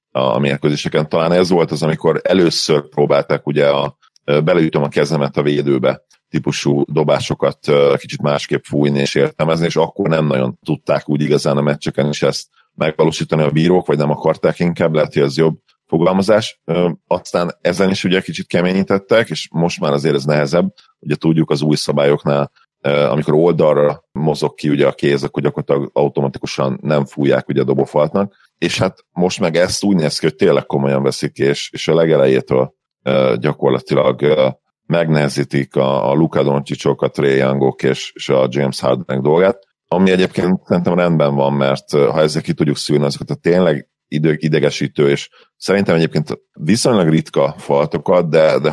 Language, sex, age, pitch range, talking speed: Hungarian, male, 40-59, 70-80 Hz, 165 wpm